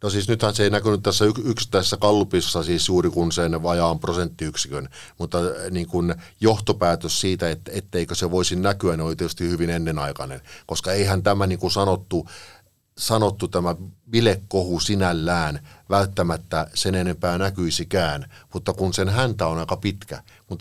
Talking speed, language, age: 145 wpm, Finnish, 50-69